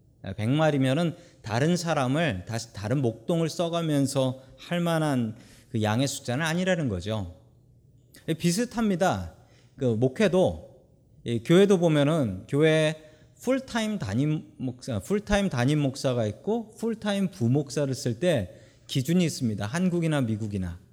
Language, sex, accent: Korean, male, native